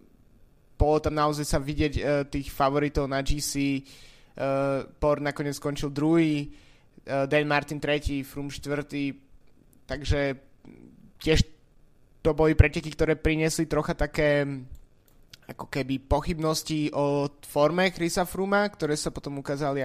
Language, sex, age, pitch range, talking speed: Slovak, male, 20-39, 140-155 Hz, 115 wpm